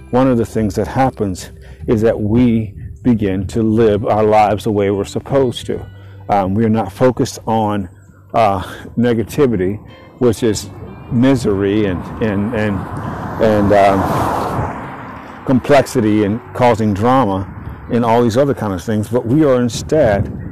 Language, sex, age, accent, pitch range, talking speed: English, male, 50-69, American, 100-120 Hz, 145 wpm